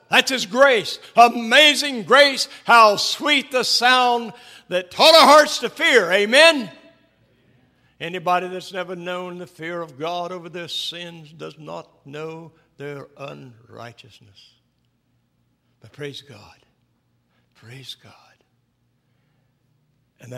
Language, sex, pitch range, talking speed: English, male, 125-180 Hz, 110 wpm